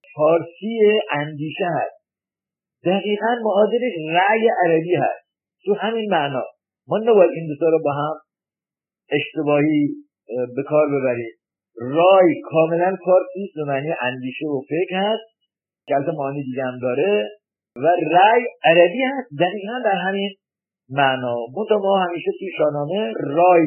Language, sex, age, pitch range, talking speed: Persian, male, 50-69, 145-200 Hz, 125 wpm